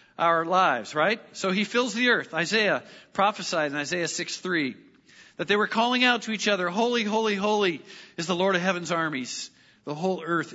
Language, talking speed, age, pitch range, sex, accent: English, 195 wpm, 40-59, 165-215 Hz, male, American